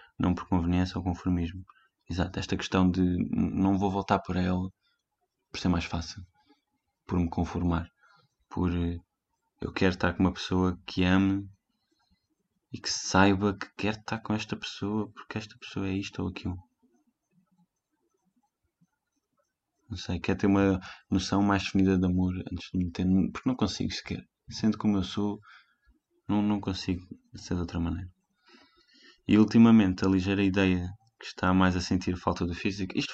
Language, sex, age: Portuguese, male, 20-39